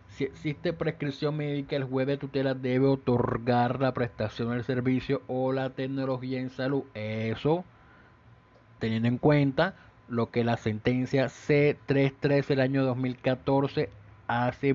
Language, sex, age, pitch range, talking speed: Spanish, male, 30-49, 120-140 Hz, 135 wpm